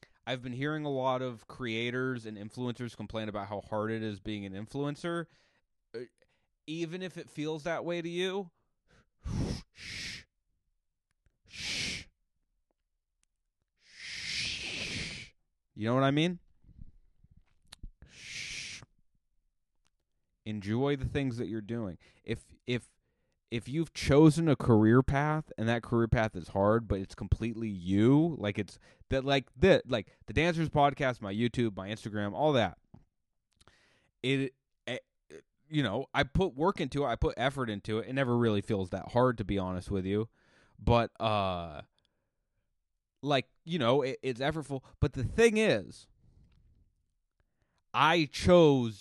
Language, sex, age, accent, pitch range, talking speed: English, male, 20-39, American, 105-145 Hz, 135 wpm